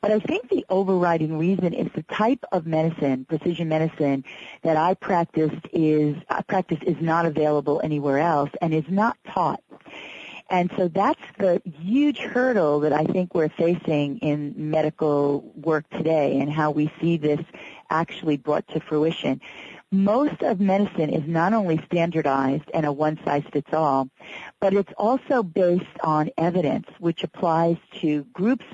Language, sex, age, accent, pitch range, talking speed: English, female, 40-59, American, 155-200 Hz, 150 wpm